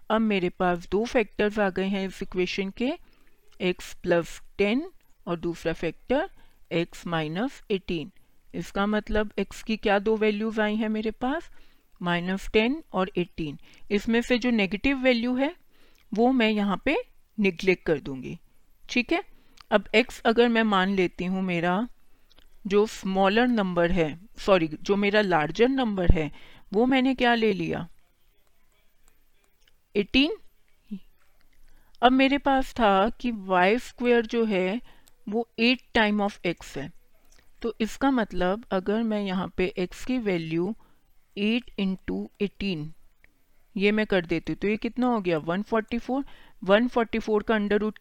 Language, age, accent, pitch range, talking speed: Hindi, 50-69, native, 185-235 Hz, 145 wpm